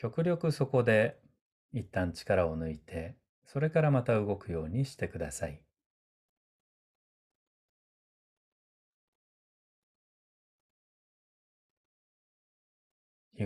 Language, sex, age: Japanese, male, 40-59